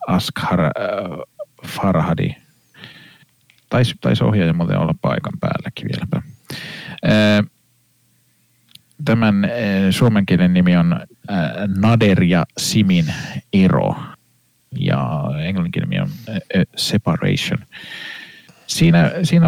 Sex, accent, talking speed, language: male, native, 95 wpm, Finnish